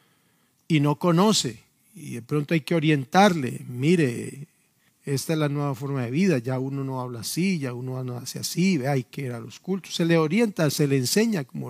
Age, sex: 50-69, male